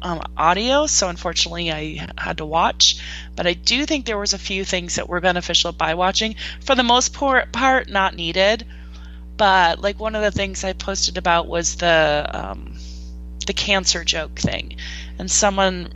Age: 20-39